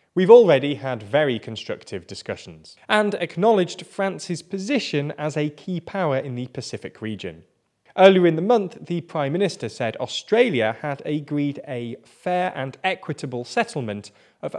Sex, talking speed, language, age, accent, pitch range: male, 145 wpm, English, 20-39, British, 115-180 Hz